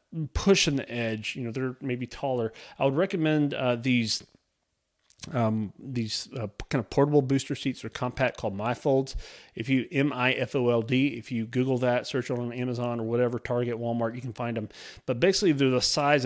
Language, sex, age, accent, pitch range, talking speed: English, male, 30-49, American, 110-130 Hz, 205 wpm